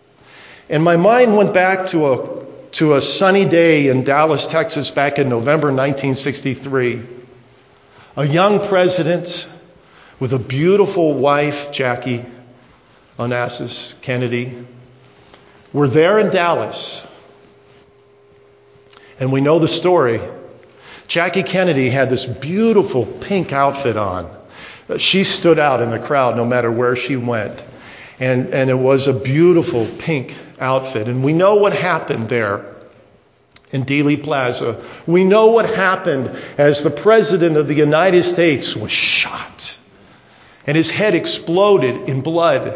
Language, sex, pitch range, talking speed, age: English, male, 130-175 Hz, 130 wpm, 50-69